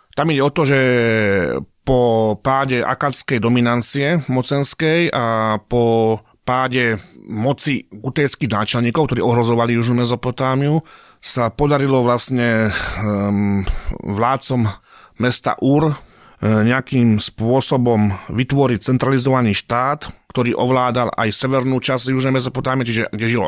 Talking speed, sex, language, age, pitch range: 105 wpm, male, Slovak, 30-49, 115-130 Hz